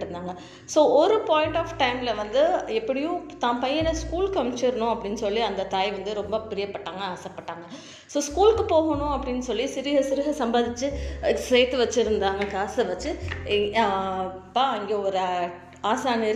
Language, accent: Tamil, native